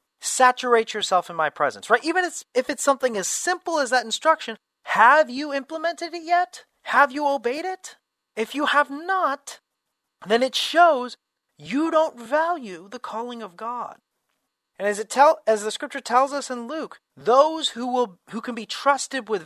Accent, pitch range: American, 155-255 Hz